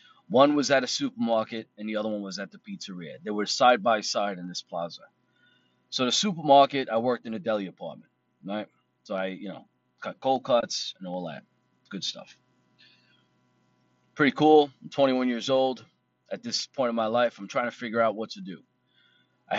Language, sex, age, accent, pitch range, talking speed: English, male, 30-49, American, 95-130 Hz, 195 wpm